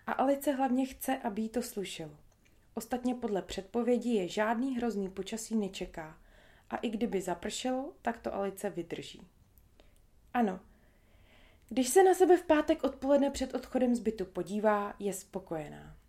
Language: Czech